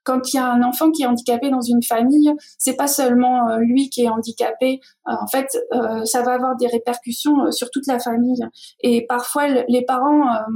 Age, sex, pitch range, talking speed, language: 20-39, female, 240-270 Hz, 195 wpm, French